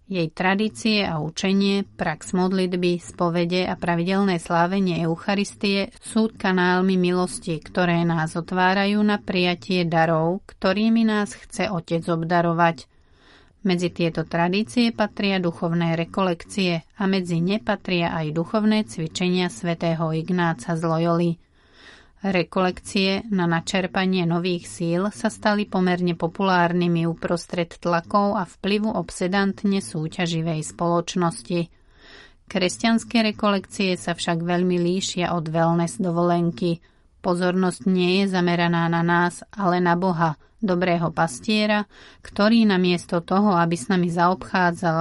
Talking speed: 110 wpm